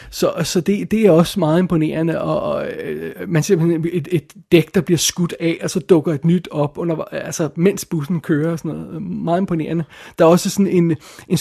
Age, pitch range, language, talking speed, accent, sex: 30-49, 155-185 Hz, Danish, 220 wpm, native, male